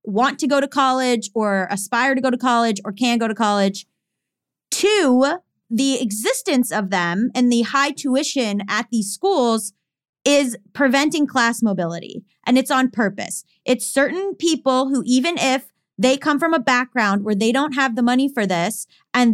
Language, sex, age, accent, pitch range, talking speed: English, female, 30-49, American, 215-270 Hz, 175 wpm